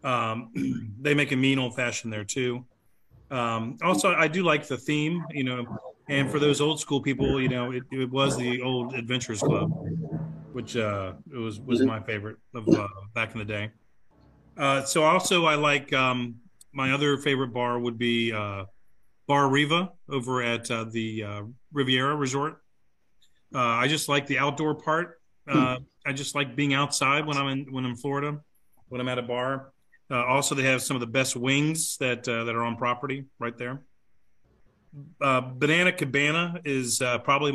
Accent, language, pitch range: American, English, 120-145 Hz